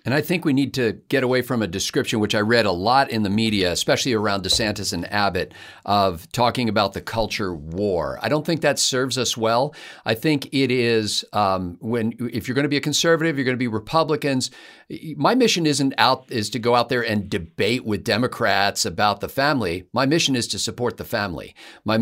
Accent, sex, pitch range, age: American, male, 105-135 Hz, 50-69